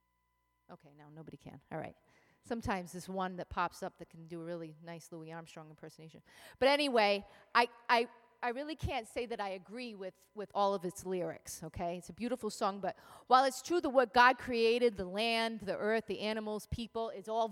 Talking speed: 205 wpm